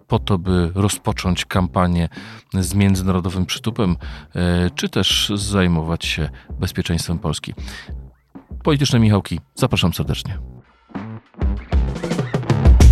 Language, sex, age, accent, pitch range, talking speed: Polish, male, 40-59, native, 90-115 Hz, 85 wpm